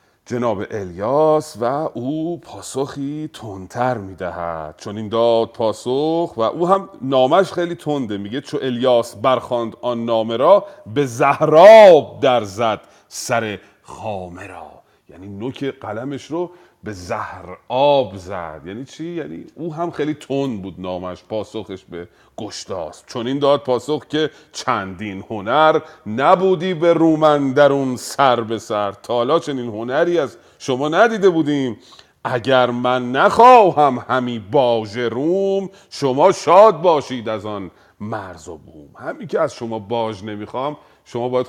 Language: Persian